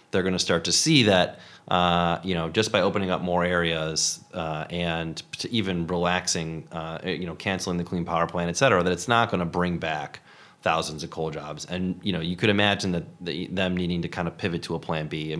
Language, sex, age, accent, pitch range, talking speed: English, male, 30-49, American, 85-100 Hz, 240 wpm